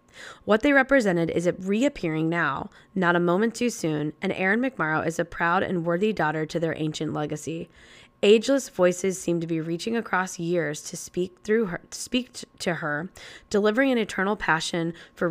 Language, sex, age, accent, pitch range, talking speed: English, female, 20-39, American, 160-200 Hz, 165 wpm